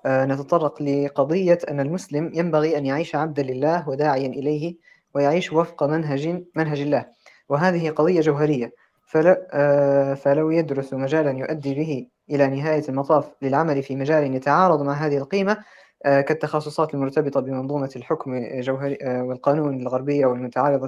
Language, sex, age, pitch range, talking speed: Arabic, female, 20-39, 130-150 Hz, 135 wpm